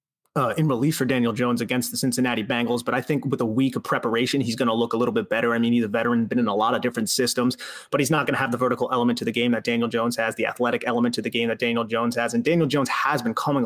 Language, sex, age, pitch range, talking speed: English, male, 30-49, 120-140 Hz, 305 wpm